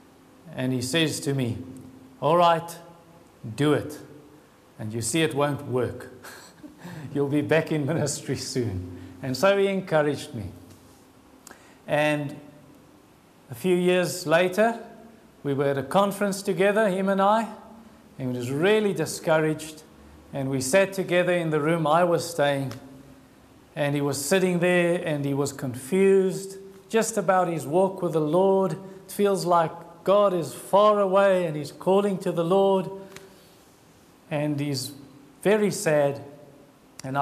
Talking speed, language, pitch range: 140 wpm, English, 135-185 Hz